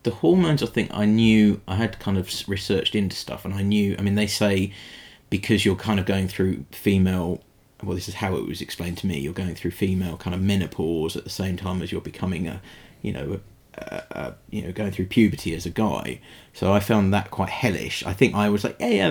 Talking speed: 240 wpm